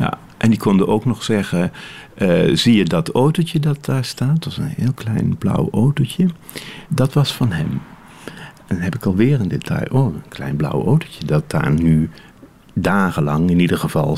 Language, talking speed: Dutch, 190 wpm